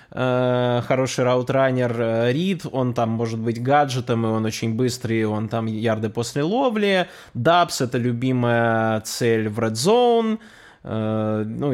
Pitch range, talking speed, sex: 120-160 Hz, 135 wpm, male